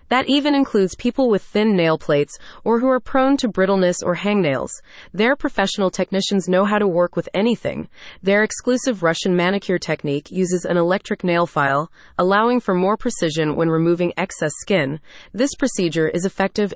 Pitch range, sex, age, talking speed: 170-220 Hz, female, 30-49, 170 wpm